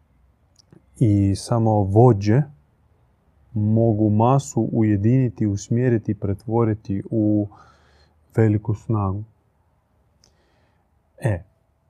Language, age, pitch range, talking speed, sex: Croatian, 30-49, 95-115 Hz, 60 wpm, male